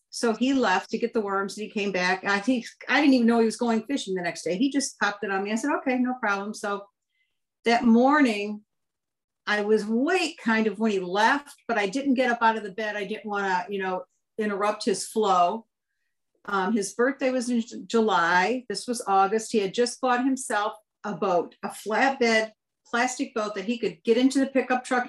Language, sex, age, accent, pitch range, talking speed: English, female, 50-69, American, 200-250 Hz, 220 wpm